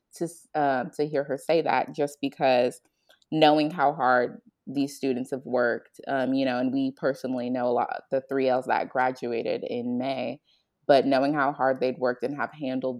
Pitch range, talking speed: 130-155 Hz, 190 wpm